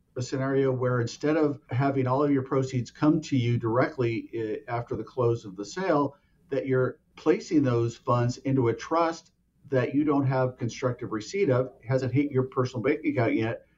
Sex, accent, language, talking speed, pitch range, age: male, American, English, 185 wpm, 120-145 Hz, 50-69